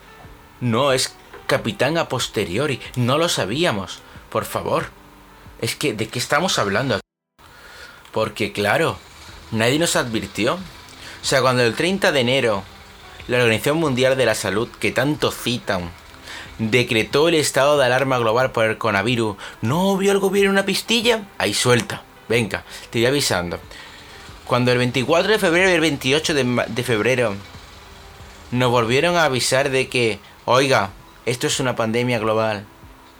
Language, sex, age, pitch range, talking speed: Spanish, male, 30-49, 100-135 Hz, 145 wpm